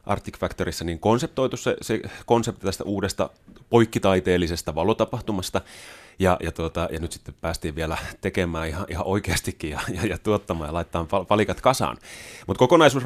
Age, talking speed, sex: 30-49, 150 wpm, male